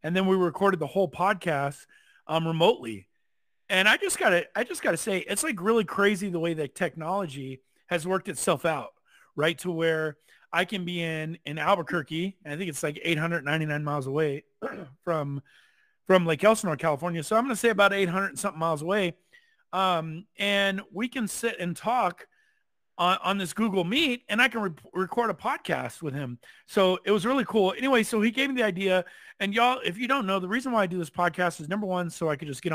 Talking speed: 205 wpm